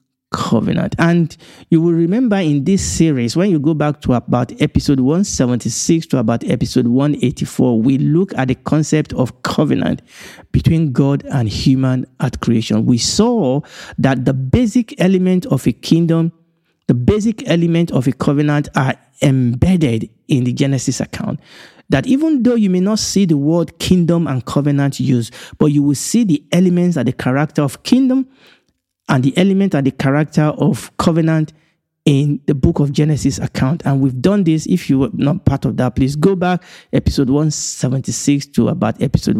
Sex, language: male, English